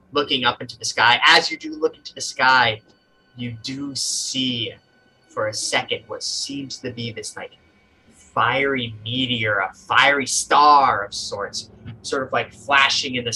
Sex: male